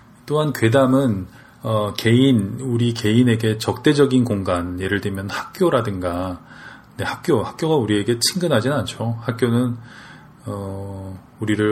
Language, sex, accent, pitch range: Korean, male, native, 100-125 Hz